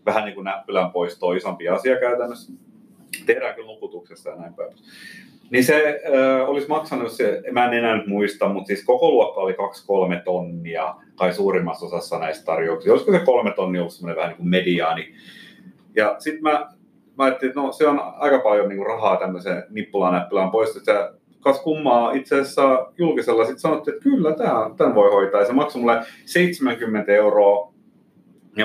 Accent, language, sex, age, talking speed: native, Finnish, male, 30-49, 175 wpm